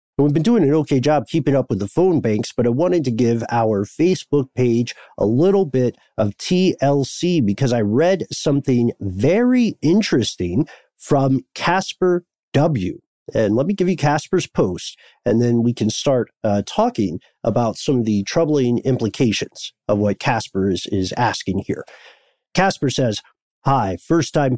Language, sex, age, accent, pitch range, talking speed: English, male, 50-69, American, 115-165 Hz, 160 wpm